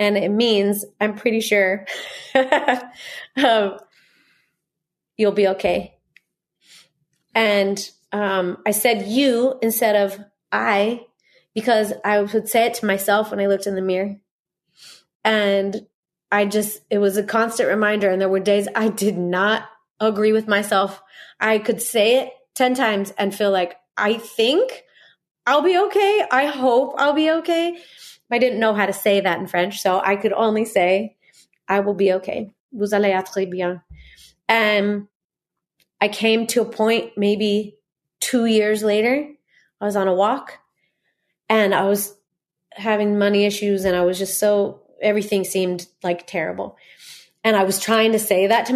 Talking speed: 160 wpm